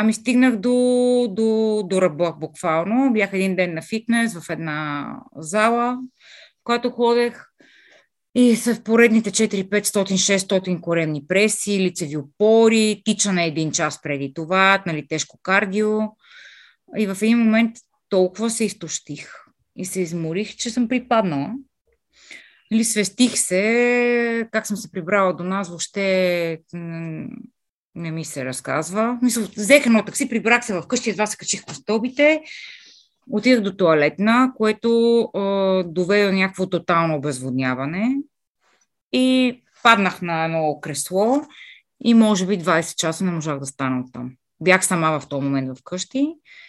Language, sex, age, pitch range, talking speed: Bulgarian, female, 30-49, 170-235 Hz, 140 wpm